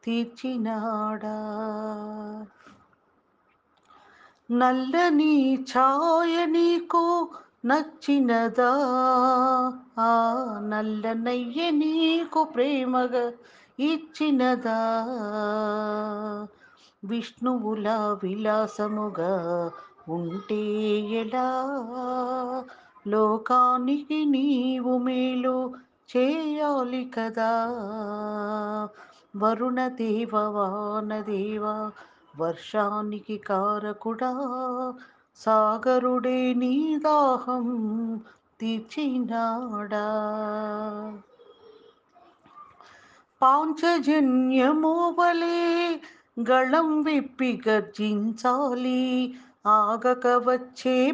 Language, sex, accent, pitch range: Telugu, female, native, 215-260 Hz